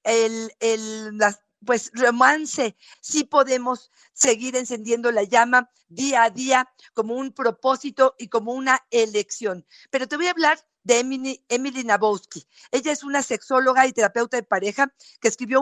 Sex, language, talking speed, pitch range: female, Spanish, 160 wpm, 230-275 Hz